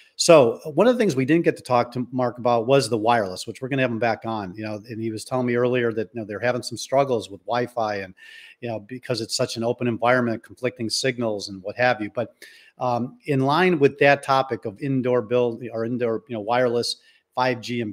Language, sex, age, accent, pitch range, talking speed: English, male, 40-59, American, 115-135 Hz, 245 wpm